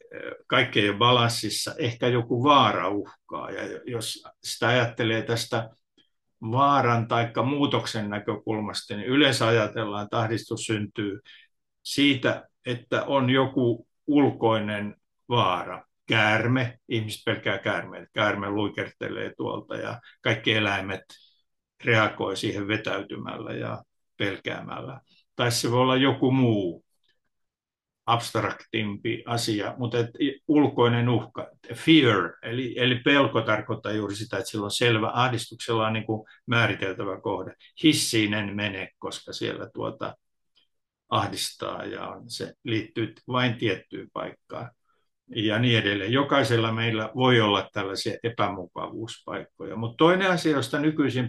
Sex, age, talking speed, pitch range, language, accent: male, 60-79, 115 wpm, 110-125 Hz, Finnish, native